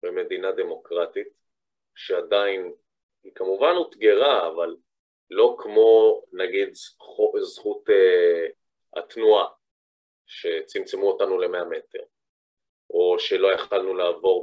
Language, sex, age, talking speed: Hebrew, male, 30-49, 85 wpm